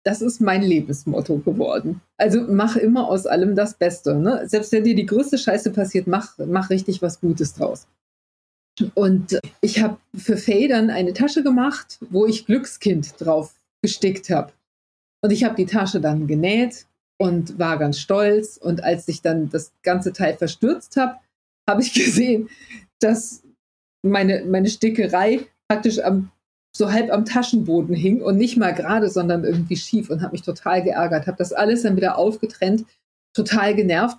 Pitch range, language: 175-220 Hz, German